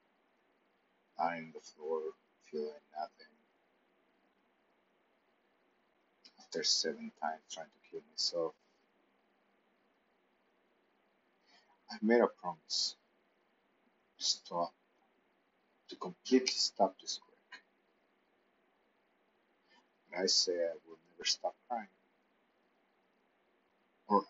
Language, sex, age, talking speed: English, male, 50-69, 80 wpm